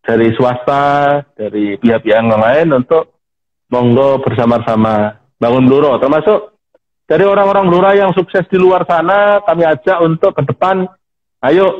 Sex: male